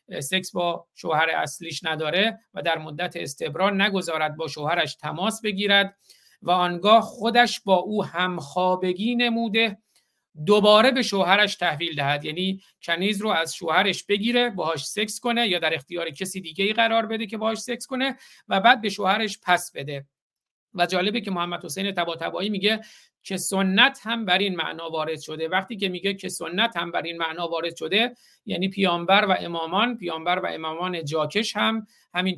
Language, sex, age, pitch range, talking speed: Persian, male, 50-69, 165-210 Hz, 165 wpm